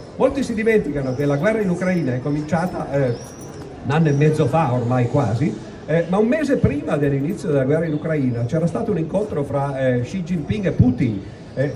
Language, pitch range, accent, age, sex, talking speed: Italian, 135-200 Hz, native, 50-69, male, 200 wpm